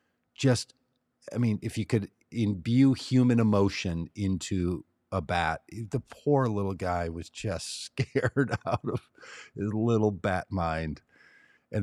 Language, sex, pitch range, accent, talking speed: English, male, 90-120 Hz, American, 130 wpm